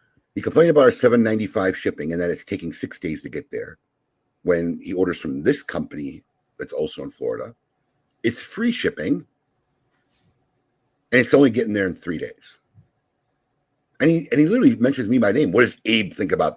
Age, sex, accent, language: 50-69, male, American, English